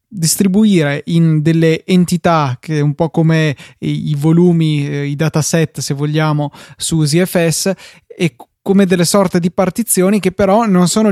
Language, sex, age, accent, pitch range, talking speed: Italian, male, 20-39, native, 155-180 Hz, 155 wpm